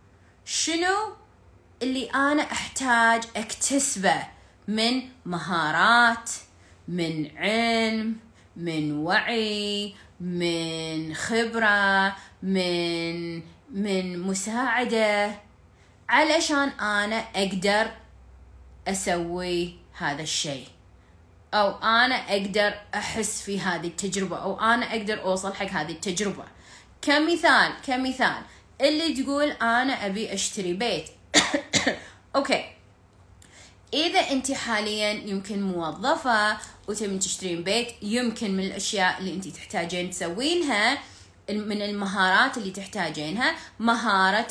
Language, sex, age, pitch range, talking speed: Arabic, female, 30-49, 170-230 Hz, 90 wpm